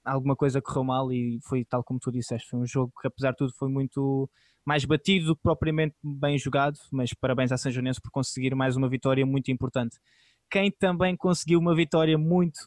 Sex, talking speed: male, 205 wpm